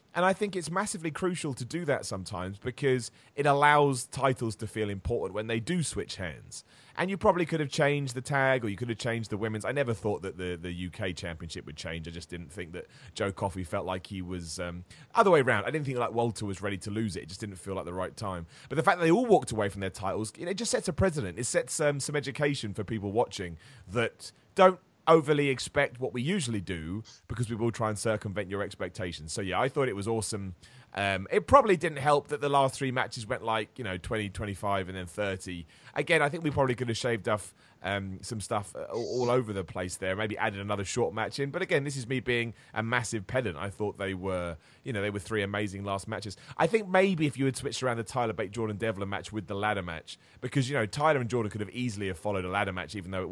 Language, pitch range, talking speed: English, 100-135 Hz, 255 wpm